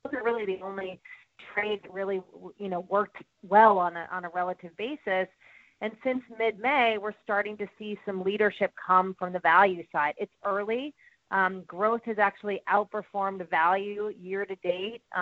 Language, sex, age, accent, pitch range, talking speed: English, female, 30-49, American, 185-215 Hz, 160 wpm